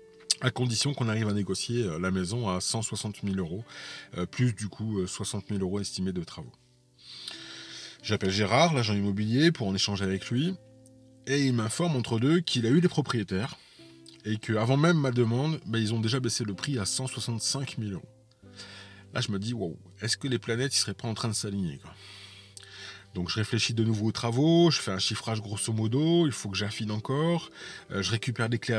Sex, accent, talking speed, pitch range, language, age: male, French, 200 wpm, 100-135 Hz, French, 20-39